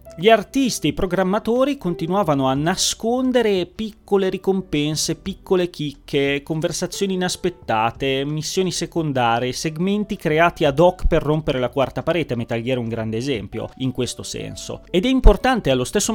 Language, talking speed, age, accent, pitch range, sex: Italian, 145 wpm, 30-49, native, 120-175 Hz, male